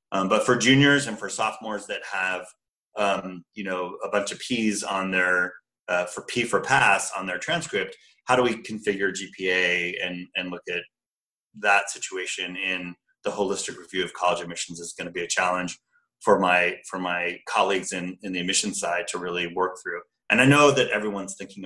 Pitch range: 90-105 Hz